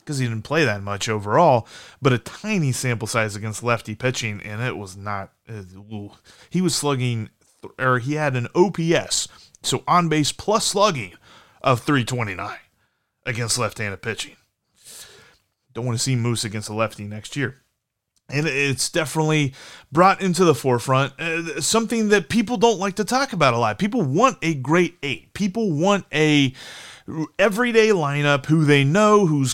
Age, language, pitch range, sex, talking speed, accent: 30-49, English, 125-180 Hz, male, 160 wpm, American